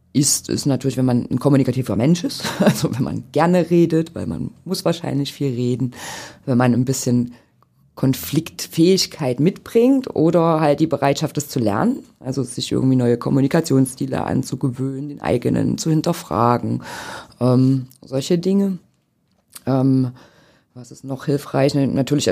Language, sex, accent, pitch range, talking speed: German, female, German, 125-155 Hz, 140 wpm